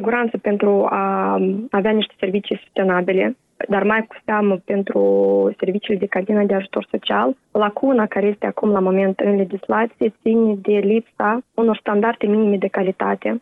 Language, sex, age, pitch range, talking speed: Romanian, female, 20-39, 195-230 Hz, 150 wpm